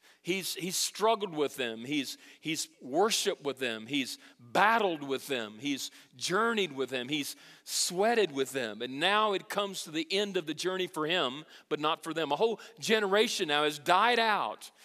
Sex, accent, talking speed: male, American, 180 wpm